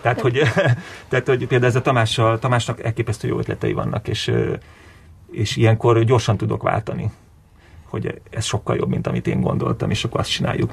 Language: Hungarian